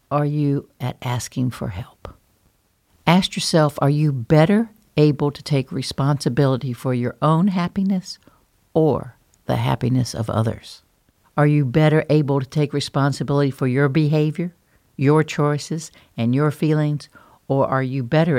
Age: 60-79